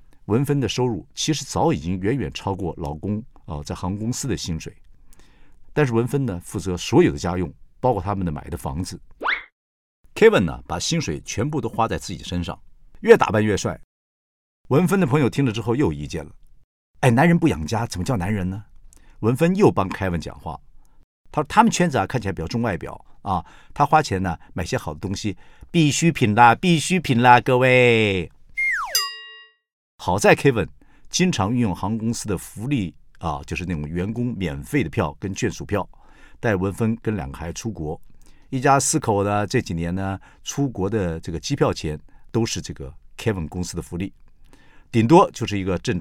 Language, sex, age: Chinese, male, 50-69